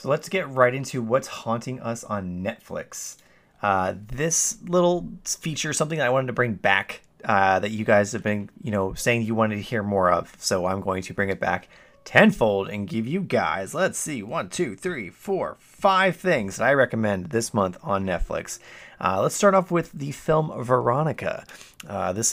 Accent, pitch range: American, 100-130 Hz